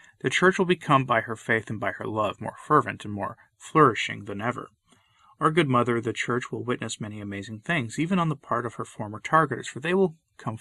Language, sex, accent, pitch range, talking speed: English, male, American, 110-140 Hz, 225 wpm